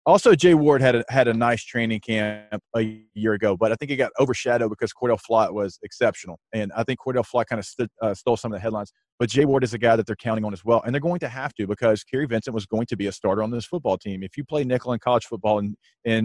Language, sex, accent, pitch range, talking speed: English, male, American, 105-120 Hz, 280 wpm